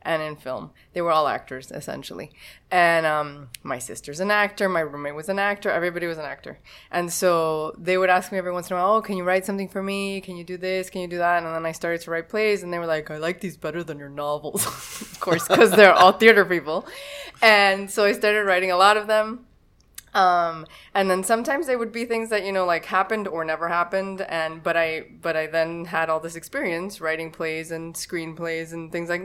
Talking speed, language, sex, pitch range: 240 wpm, English, female, 160-195 Hz